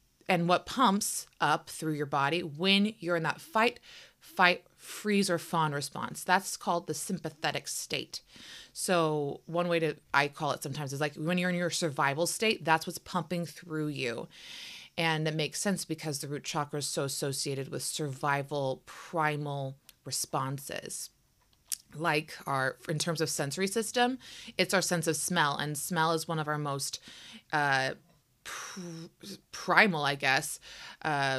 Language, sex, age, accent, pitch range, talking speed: English, female, 30-49, American, 150-180 Hz, 155 wpm